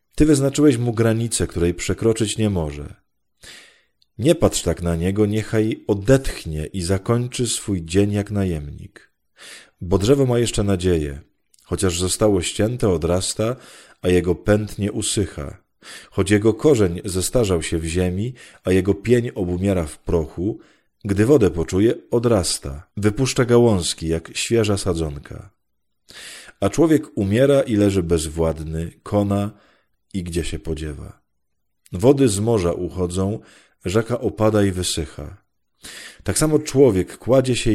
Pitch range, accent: 85-110 Hz, native